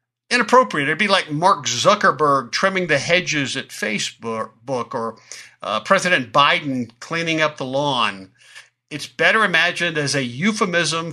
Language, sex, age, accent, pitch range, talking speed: English, male, 60-79, American, 135-180 Hz, 135 wpm